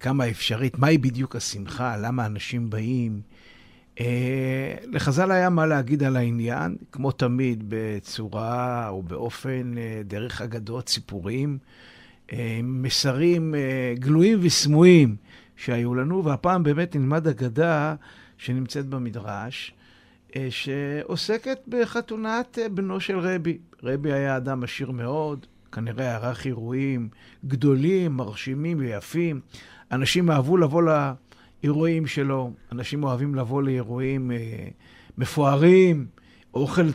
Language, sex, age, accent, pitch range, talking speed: Hebrew, male, 50-69, native, 120-170 Hz, 95 wpm